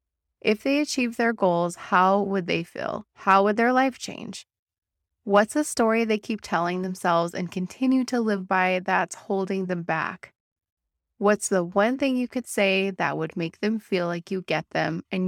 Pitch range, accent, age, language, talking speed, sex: 185-220 Hz, American, 20-39, English, 185 wpm, female